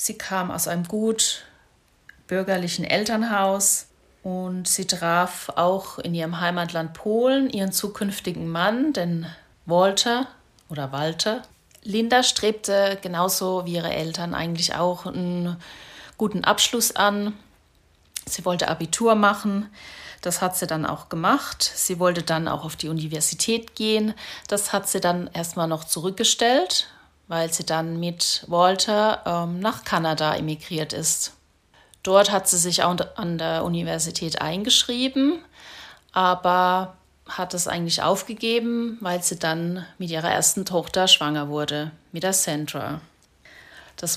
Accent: German